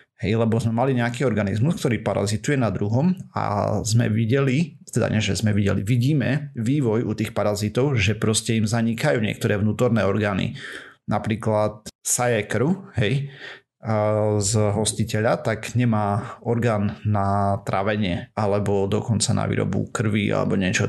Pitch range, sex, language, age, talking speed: 105-125 Hz, male, Slovak, 30-49, 135 wpm